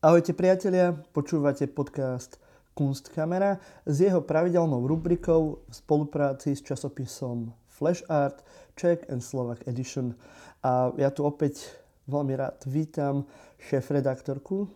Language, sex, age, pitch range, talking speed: Slovak, male, 30-49, 130-160 Hz, 110 wpm